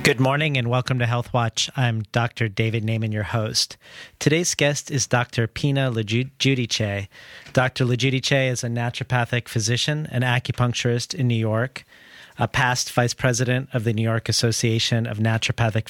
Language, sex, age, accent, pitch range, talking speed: English, male, 40-59, American, 115-130 Hz, 155 wpm